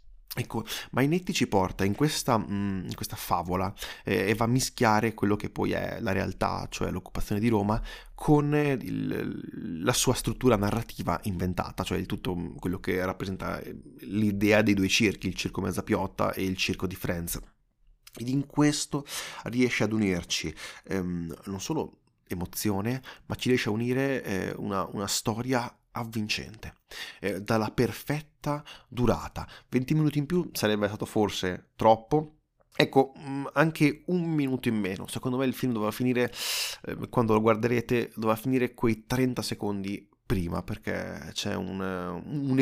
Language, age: Italian, 20-39